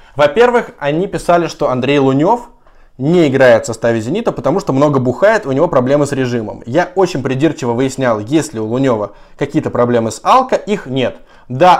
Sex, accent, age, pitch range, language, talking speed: male, native, 20-39, 125-180 Hz, Russian, 180 wpm